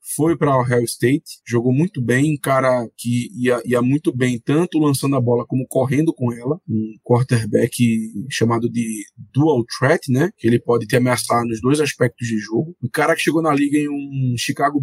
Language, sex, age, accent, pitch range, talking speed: Portuguese, male, 20-39, Brazilian, 125-160 Hz, 195 wpm